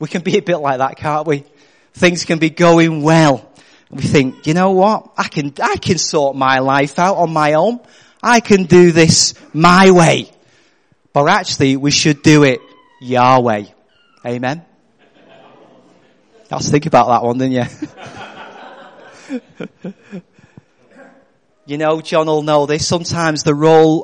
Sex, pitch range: male, 145-185 Hz